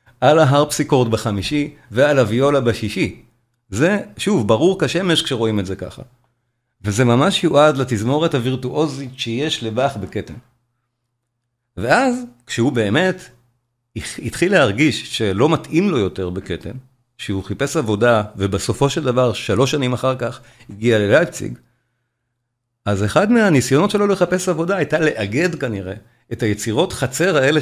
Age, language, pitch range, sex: 40-59, Hebrew, 115-150 Hz, male